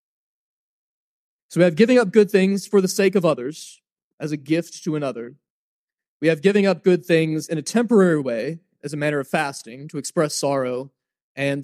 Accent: American